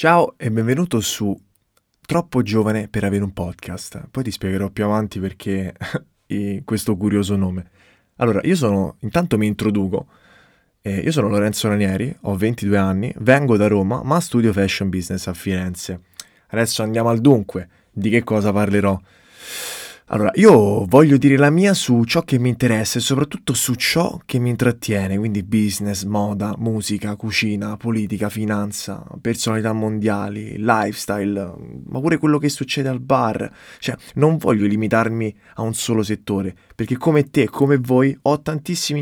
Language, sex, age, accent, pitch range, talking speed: Italian, male, 20-39, native, 100-130 Hz, 155 wpm